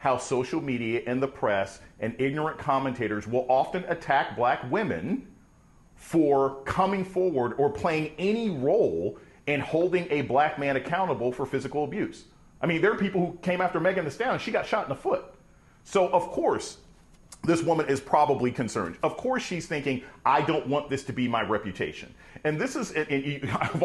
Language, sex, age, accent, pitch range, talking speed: English, male, 40-59, American, 135-185 Hz, 185 wpm